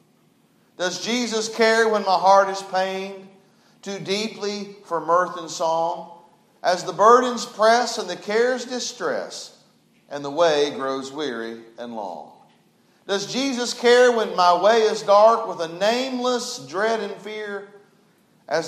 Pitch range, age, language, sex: 145-205 Hz, 40-59, English, male